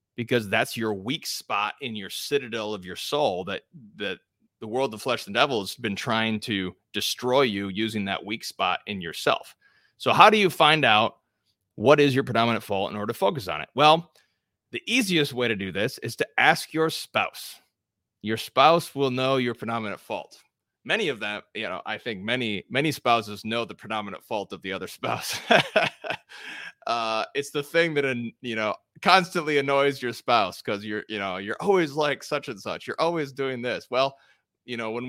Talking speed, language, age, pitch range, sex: 195 wpm, English, 30-49, 105-135 Hz, male